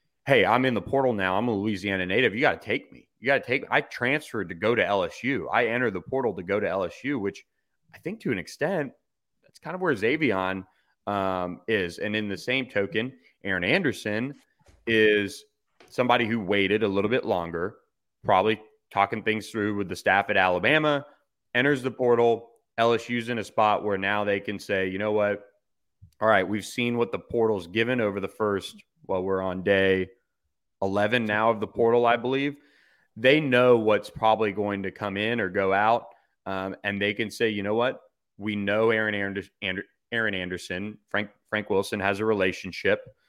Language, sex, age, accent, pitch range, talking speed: English, male, 30-49, American, 95-115 Hz, 195 wpm